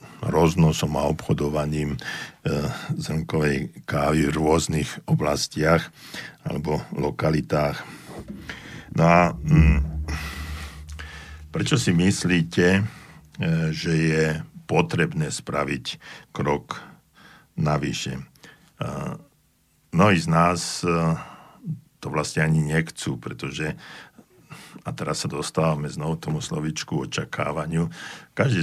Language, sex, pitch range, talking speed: Slovak, male, 80-100 Hz, 85 wpm